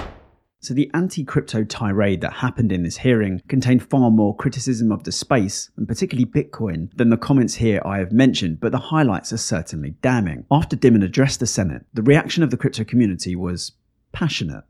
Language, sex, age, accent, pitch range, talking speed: English, male, 30-49, British, 100-135 Hz, 185 wpm